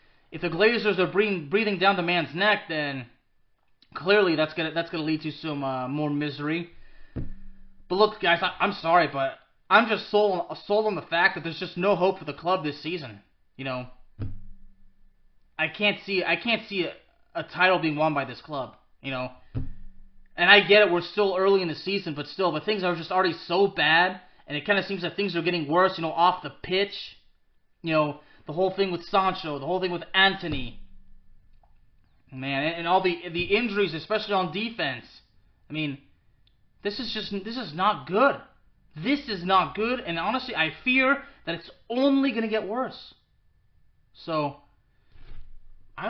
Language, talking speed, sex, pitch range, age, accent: English, 190 wpm, male, 145-210 Hz, 20-39, American